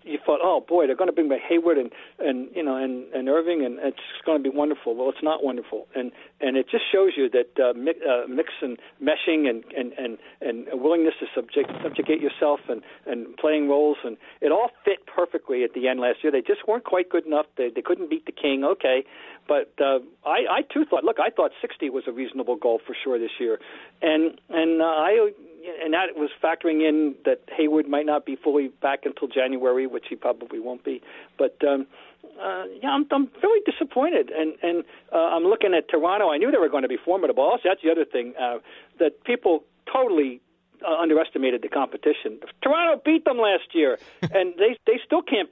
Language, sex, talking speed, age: English, male, 215 wpm, 50-69